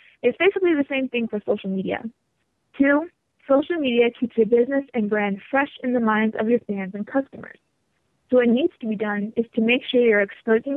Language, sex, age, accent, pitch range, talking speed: English, female, 20-39, American, 210-255 Hz, 205 wpm